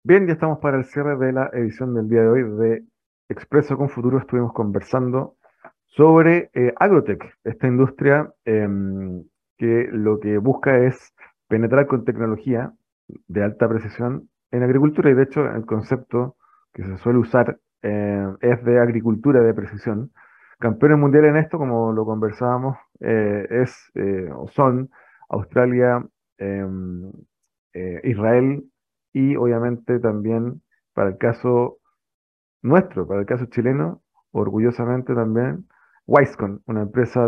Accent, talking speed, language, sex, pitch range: Argentinian, 135 wpm, Spanish, male, 105-130 Hz